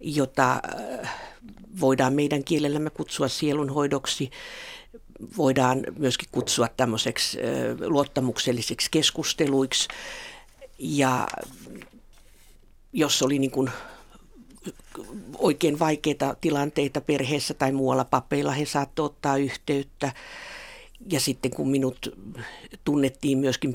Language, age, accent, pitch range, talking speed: Finnish, 60-79, native, 125-145 Hz, 80 wpm